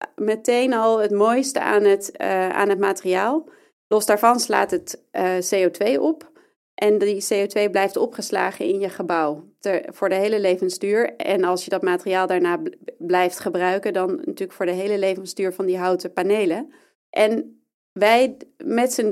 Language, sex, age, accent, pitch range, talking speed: Dutch, female, 30-49, Dutch, 195-255 Hz, 165 wpm